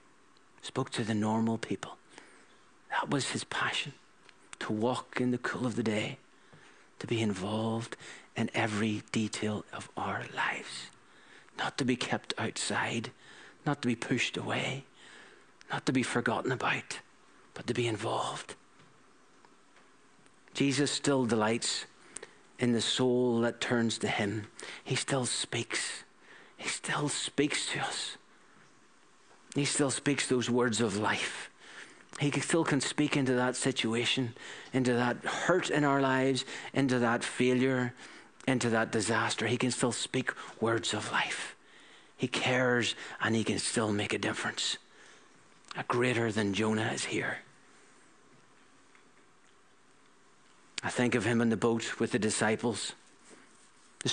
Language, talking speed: English, 135 wpm